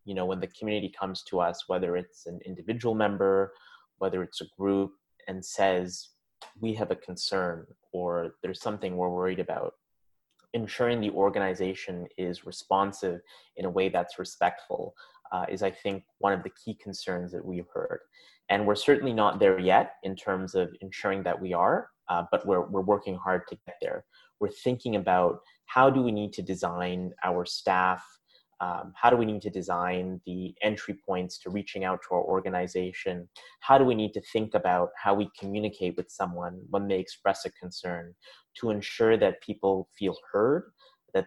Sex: male